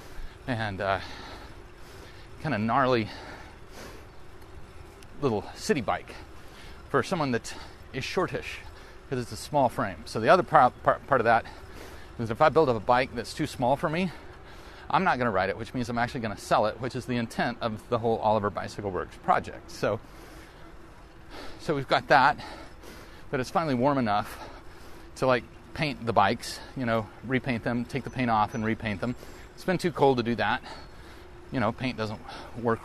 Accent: American